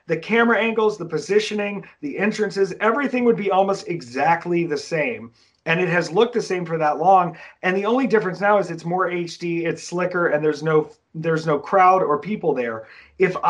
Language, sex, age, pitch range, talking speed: English, male, 40-59, 160-195 Hz, 195 wpm